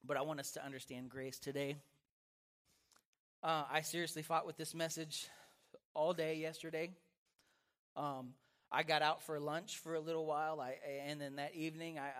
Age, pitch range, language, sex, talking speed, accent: 30-49, 140-185 Hz, English, male, 165 wpm, American